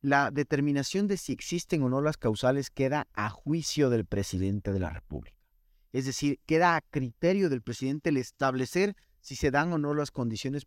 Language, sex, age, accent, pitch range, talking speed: Spanish, male, 40-59, Mexican, 125-165 Hz, 185 wpm